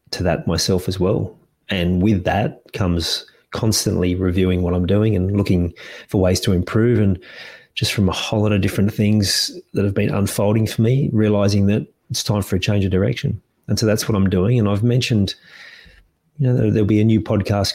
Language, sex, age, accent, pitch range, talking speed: English, male, 30-49, Australian, 95-110 Hz, 205 wpm